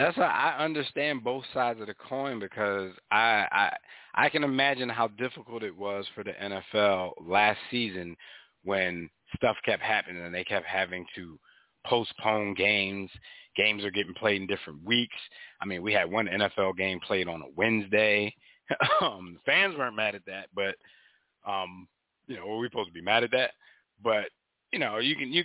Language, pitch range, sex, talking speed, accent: English, 100-120 Hz, male, 180 wpm, American